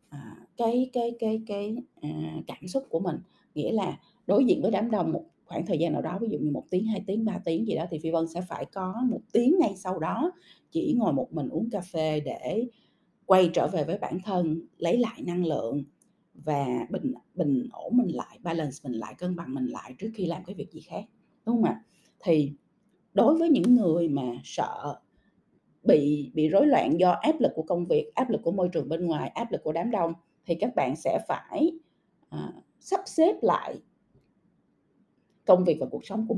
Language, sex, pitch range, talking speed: Vietnamese, female, 165-240 Hz, 215 wpm